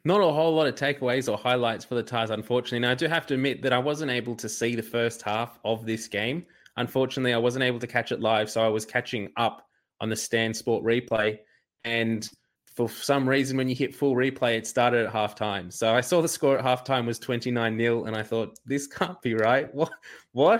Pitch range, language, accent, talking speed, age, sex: 110-125 Hz, English, Australian, 235 wpm, 20-39, male